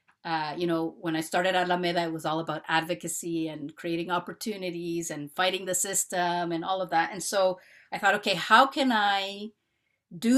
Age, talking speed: 40-59, 185 wpm